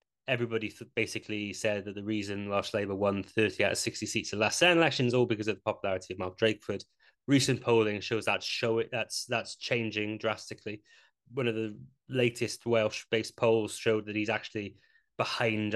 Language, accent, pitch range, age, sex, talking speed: English, British, 105-125 Hz, 20-39, male, 190 wpm